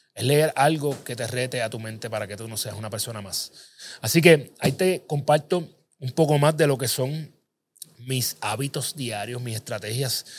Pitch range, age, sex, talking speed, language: 110-145 Hz, 30-49, male, 195 wpm, Spanish